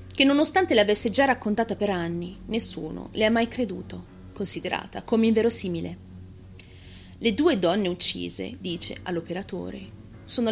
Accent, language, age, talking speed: native, Italian, 30-49, 125 wpm